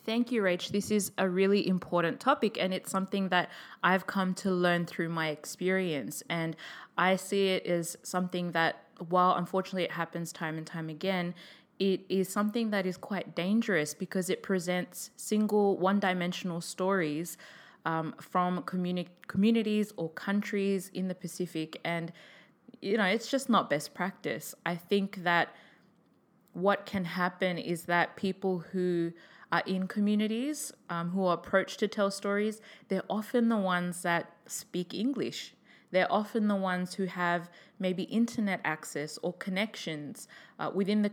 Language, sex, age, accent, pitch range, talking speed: English, female, 20-39, Australian, 170-195 Hz, 155 wpm